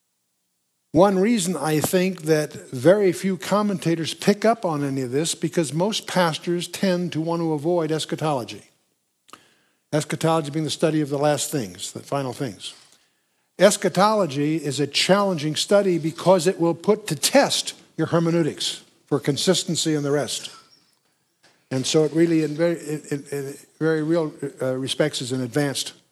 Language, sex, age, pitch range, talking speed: English, male, 60-79, 145-185 Hz, 145 wpm